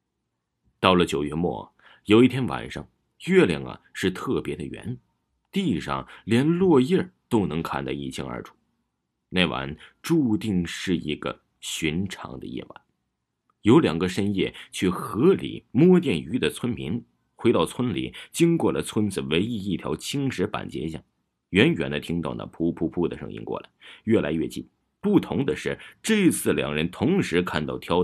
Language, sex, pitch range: Chinese, male, 75-110 Hz